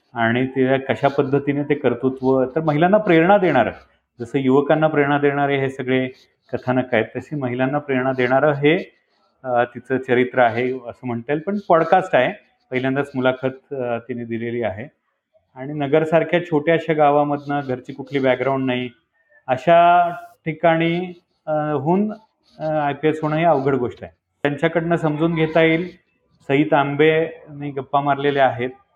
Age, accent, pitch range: 40-59, native, 130-160 Hz